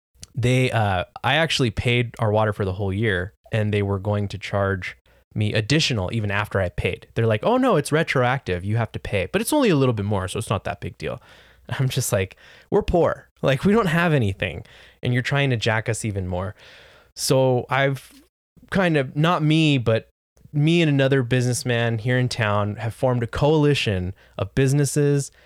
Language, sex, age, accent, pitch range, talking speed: English, male, 20-39, American, 100-130 Hz, 200 wpm